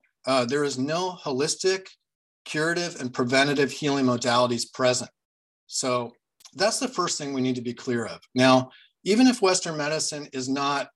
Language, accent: English, American